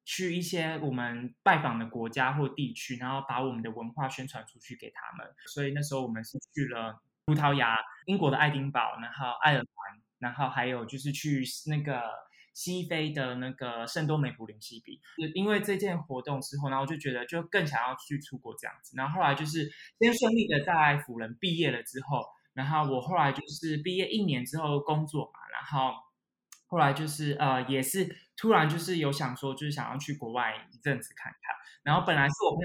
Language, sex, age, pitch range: Chinese, male, 20-39, 130-165 Hz